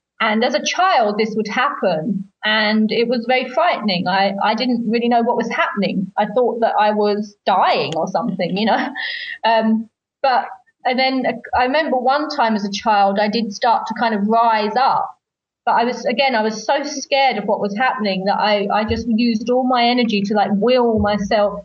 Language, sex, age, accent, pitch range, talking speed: English, female, 30-49, British, 205-245 Hz, 205 wpm